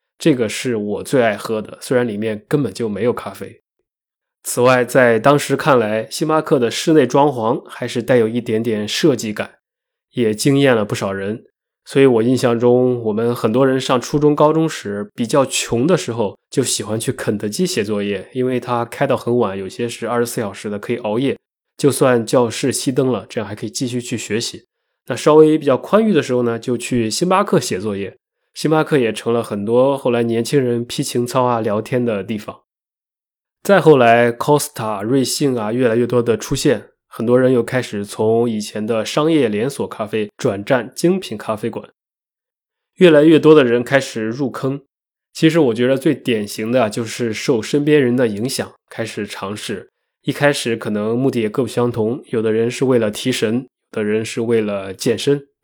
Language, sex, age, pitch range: Chinese, male, 20-39, 110-135 Hz